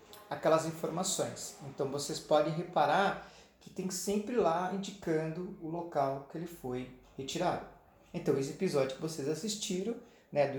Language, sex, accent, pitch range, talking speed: Portuguese, male, Brazilian, 135-175 Hz, 140 wpm